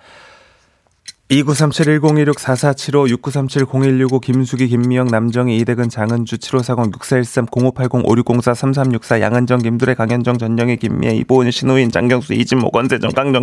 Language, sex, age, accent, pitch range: Korean, male, 30-49, native, 120-160 Hz